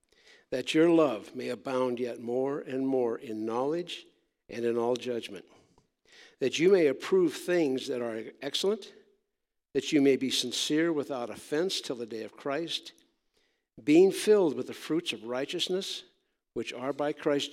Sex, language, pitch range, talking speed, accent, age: male, English, 120-200 Hz, 160 wpm, American, 60-79